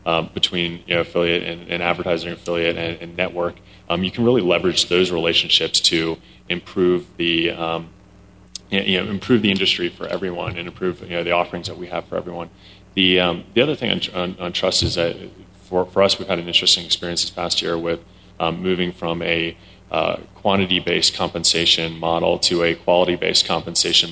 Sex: male